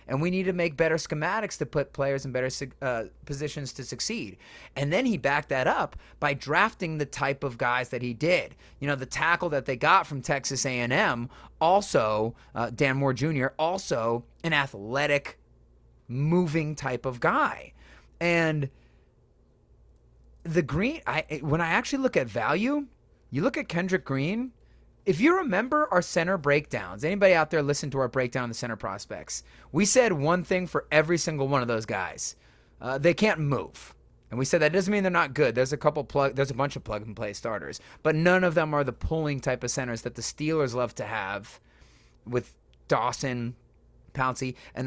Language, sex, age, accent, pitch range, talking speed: English, male, 30-49, American, 120-165 Hz, 185 wpm